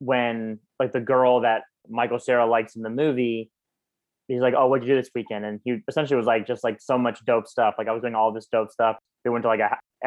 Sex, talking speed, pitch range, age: male, 255 wpm, 110-125 Hz, 20-39